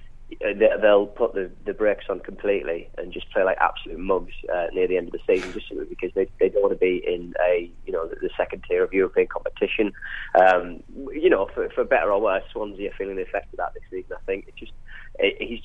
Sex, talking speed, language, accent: male, 240 wpm, English, British